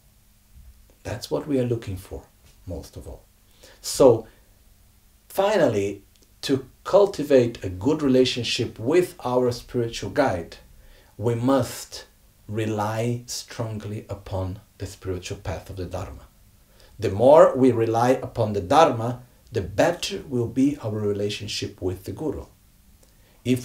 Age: 50-69